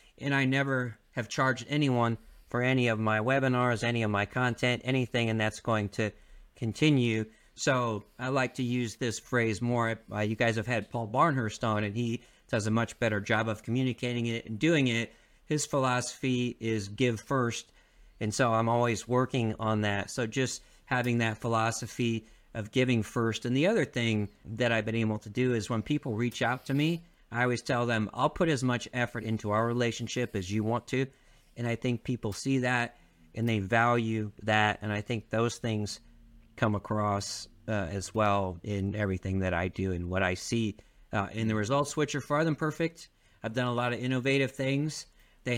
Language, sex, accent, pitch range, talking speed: English, male, American, 110-125 Hz, 195 wpm